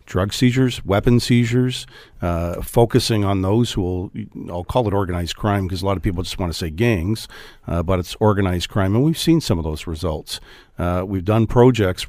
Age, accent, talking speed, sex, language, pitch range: 50-69, American, 205 wpm, male, English, 90-115 Hz